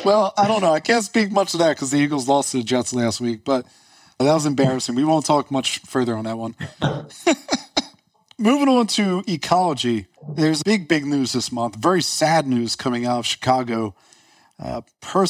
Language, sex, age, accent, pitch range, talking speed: English, male, 40-59, American, 130-185 Hz, 195 wpm